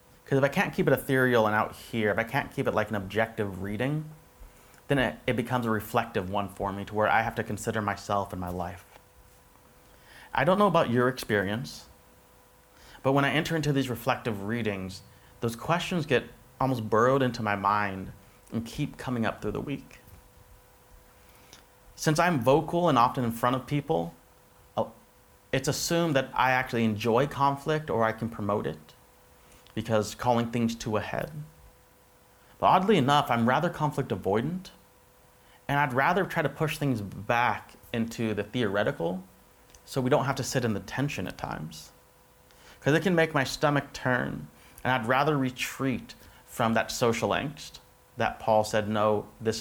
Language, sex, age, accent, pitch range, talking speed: English, male, 30-49, American, 105-135 Hz, 175 wpm